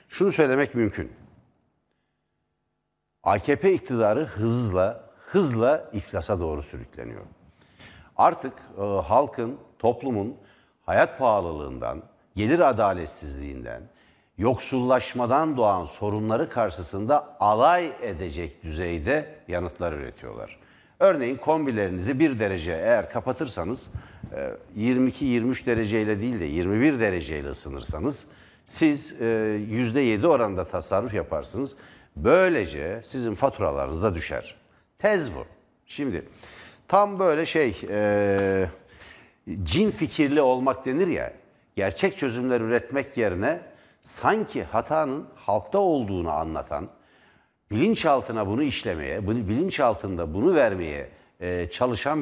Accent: native